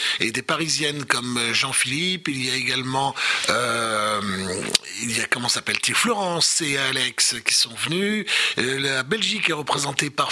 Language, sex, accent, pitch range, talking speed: French, male, French, 125-160 Hz, 150 wpm